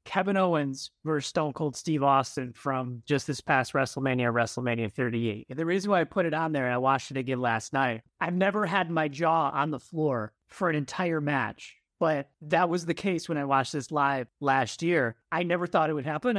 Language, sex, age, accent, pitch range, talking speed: English, male, 30-49, American, 140-185 Hz, 220 wpm